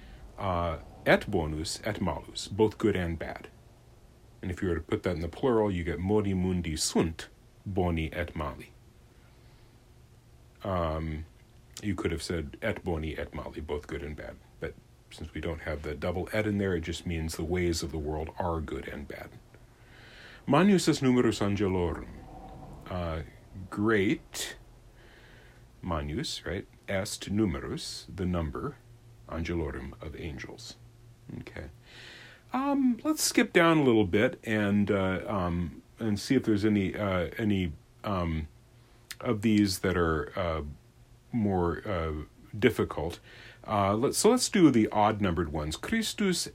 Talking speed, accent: 145 wpm, American